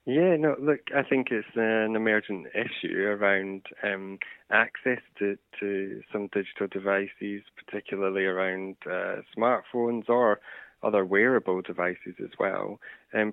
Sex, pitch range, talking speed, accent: male, 95-110 Hz, 125 wpm, British